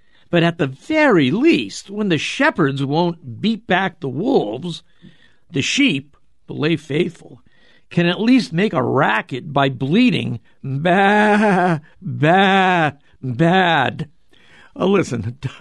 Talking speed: 125 wpm